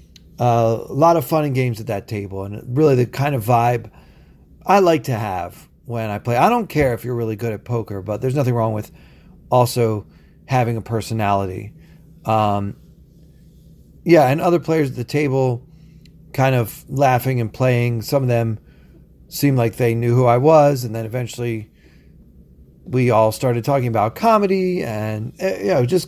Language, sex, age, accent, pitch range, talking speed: English, male, 40-59, American, 110-135 Hz, 175 wpm